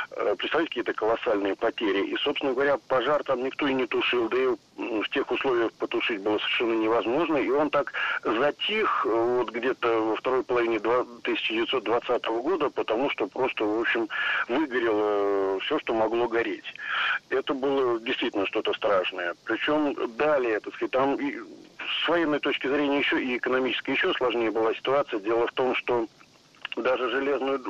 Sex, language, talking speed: male, Russian, 150 wpm